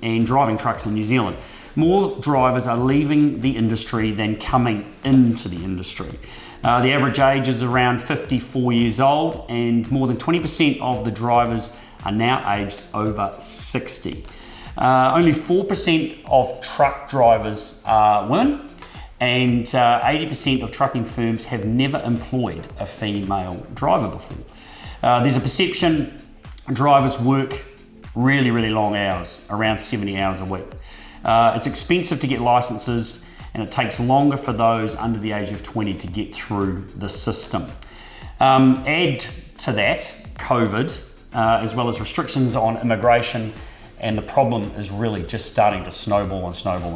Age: 30-49